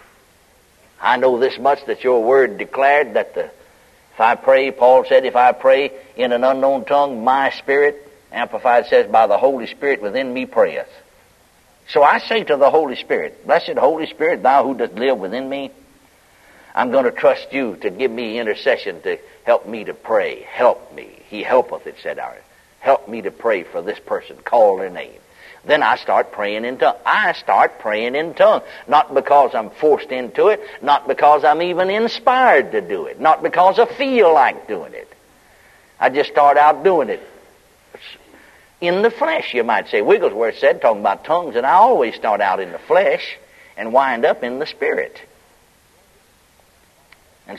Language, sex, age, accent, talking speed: English, male, 60-79, American, 180 wpm